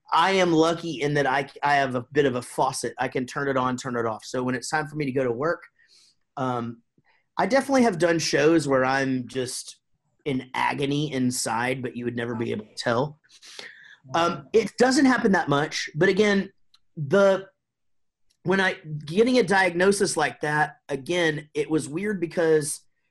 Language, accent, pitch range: English, American, 125-165 Hz